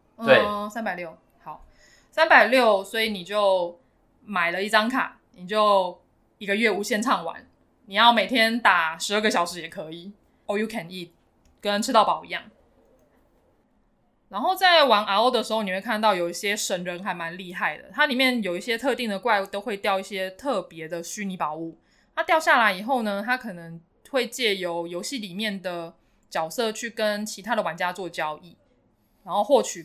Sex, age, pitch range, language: female, 20-39, 180-225 Hz, Chinese